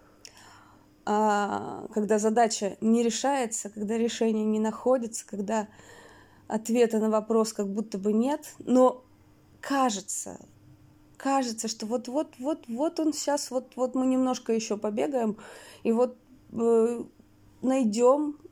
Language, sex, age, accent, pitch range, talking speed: Russian, female, 20-39, native, 195-245 Hz, 100 wpm